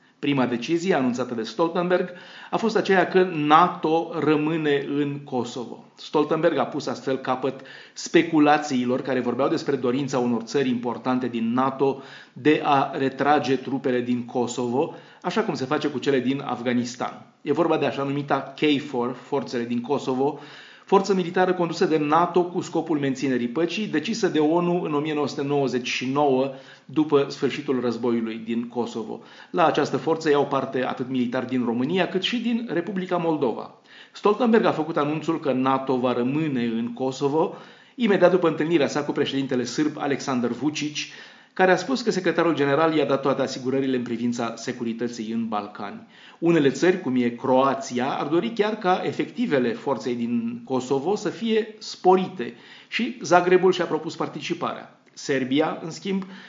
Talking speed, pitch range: 150 wpm, 125-165 Hz